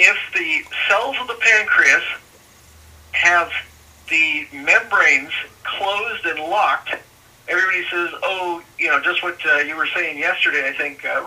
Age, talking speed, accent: 50-69, 145 wpm, American